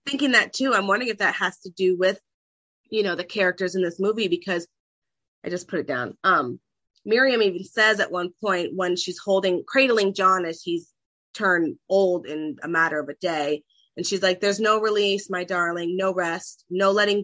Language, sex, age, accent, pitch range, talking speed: English, female, 30-49, American, 170-205 Hz, 200 wpm